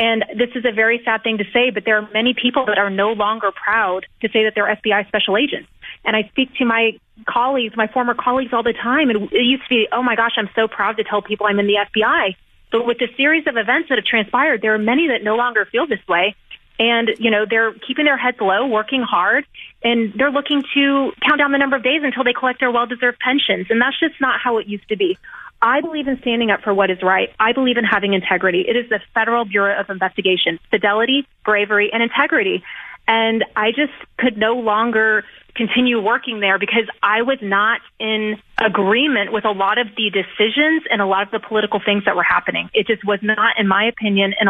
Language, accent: English, American